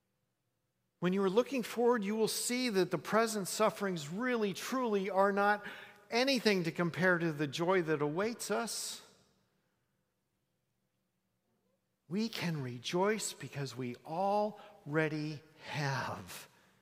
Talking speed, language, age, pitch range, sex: 115 wpm, English, 50-69, 135-195 Hz, male